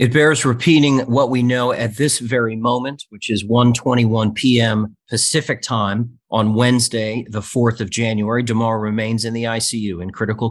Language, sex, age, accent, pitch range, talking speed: English, male, 40-59, American, 100-115 Hz, 165 wpm